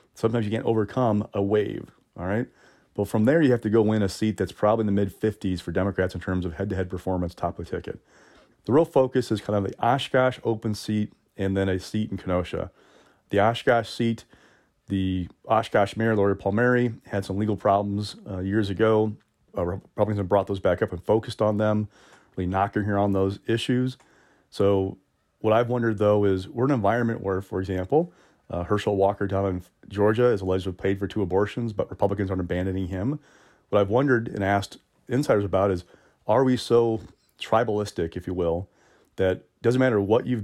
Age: 30-49